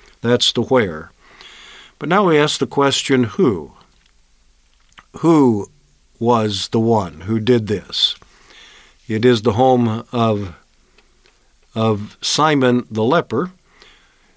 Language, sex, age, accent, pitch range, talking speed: English, male, 50-69, American, 115-145 Hz, 110 wpm